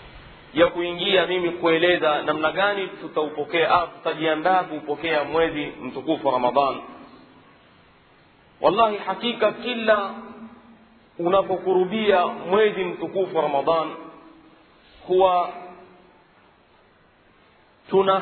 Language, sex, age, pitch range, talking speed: Swahili, male, 40-59, 180-225 Hz, 75 wpm